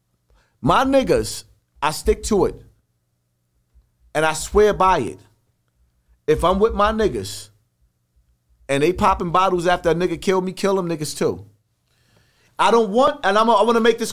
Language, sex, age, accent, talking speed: English, male, 40-59, American, 165 wpm